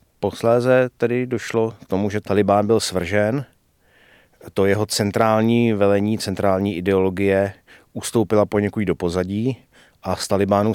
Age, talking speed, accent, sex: 30-49, 125 wpm, native, male